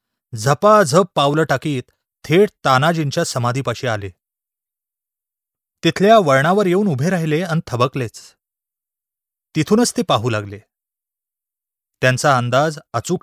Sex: male